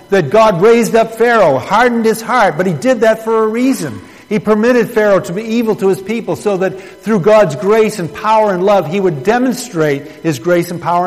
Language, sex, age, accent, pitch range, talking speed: English, male, 50-69, American, 160-210 Hz, 215 wpm